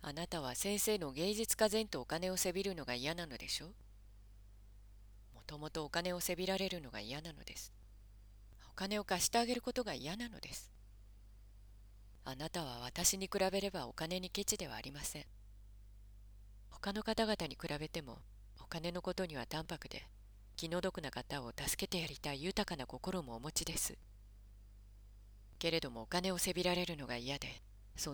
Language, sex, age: Japanese, female, 40-59